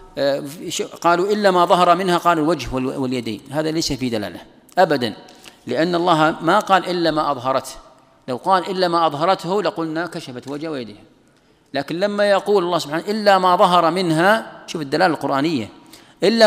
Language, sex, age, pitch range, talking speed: Arabic, male, 40-59, 145-175 Hz, 155 wpm